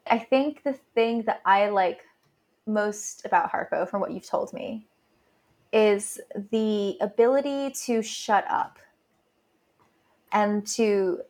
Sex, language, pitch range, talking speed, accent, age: female, English, 195-230 Hz, 120 wpm, American, 20-39